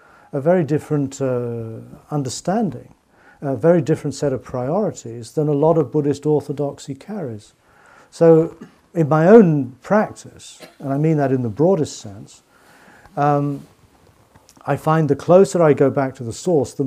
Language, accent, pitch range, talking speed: English, British, 120-150 Hz, 155 wpm